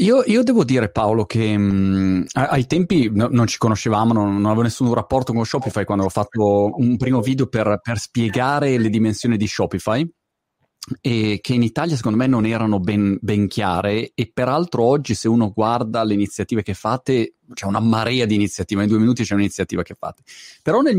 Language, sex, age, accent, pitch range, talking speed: Italian, male, 30-49, native, 105-135 Hz, 185 wpm